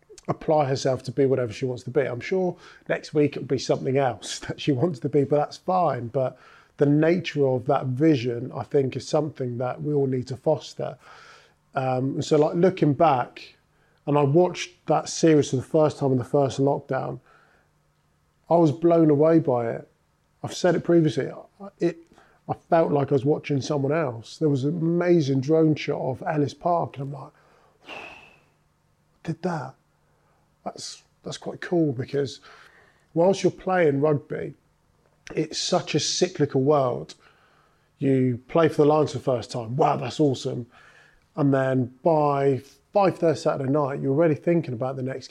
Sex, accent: male, British